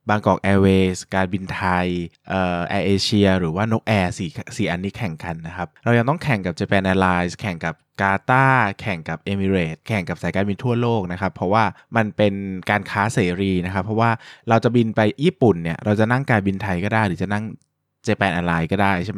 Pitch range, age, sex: 95-115 Hz, 20-39, male